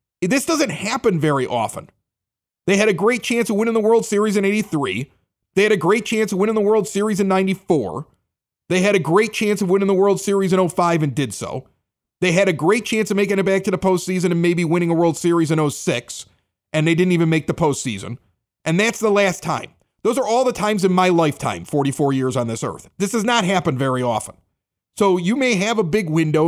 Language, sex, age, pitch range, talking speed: English, male, 40-59, 150-200 Hz, 230 wpm